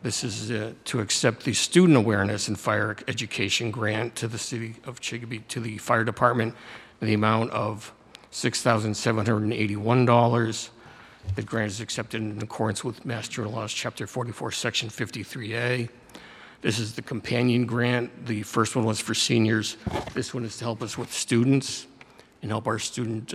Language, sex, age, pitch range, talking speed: English, male, 60-79, 110-120 Hz, 160 wpm